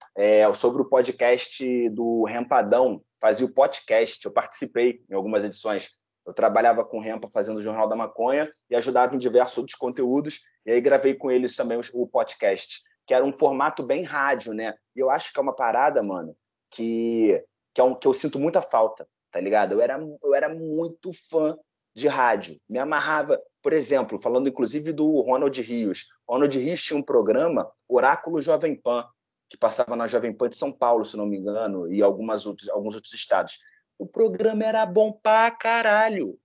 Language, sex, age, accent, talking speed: Portuguese, male, 20-39, Brazilian, 180 wpm